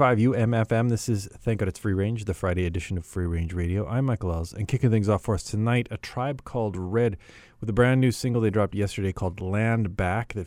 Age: 30-49